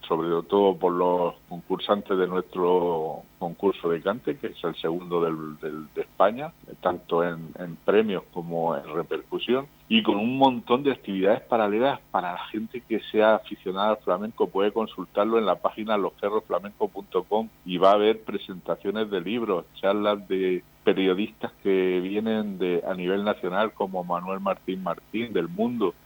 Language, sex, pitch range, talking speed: Spanish, male, 90-105 Hz, 155 wpm